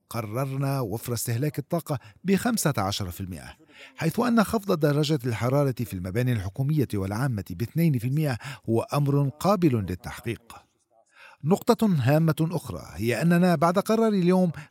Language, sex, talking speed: Arabic, male, 120 wpm